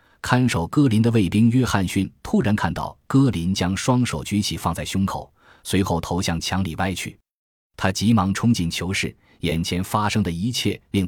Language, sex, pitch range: Chinese, male, 85-115 Hz